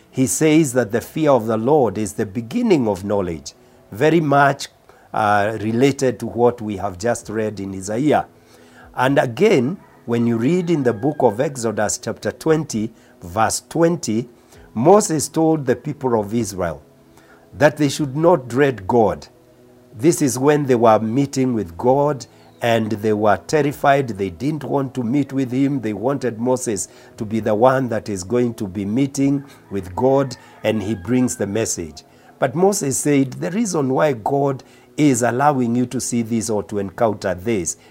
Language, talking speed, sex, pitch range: English, 170 wpm, male, 110-140 Hz